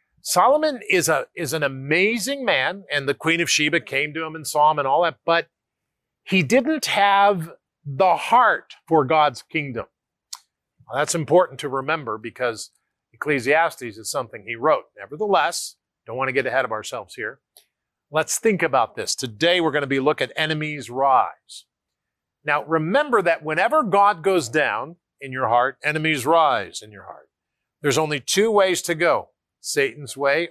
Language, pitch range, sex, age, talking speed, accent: English, 135-175 Hz, male, 40-59, 165 wpm, American